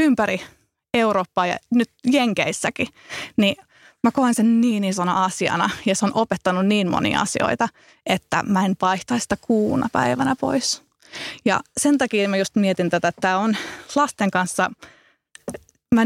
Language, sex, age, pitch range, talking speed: English, female, 20-39, 185-245 Hz, 145 wpm